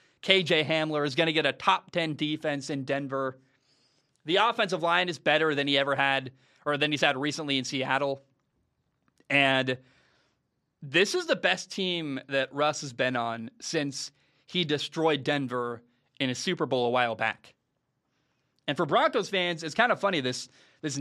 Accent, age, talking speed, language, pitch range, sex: American, 30-49, 170 wpm, English, 135-165 Hz, male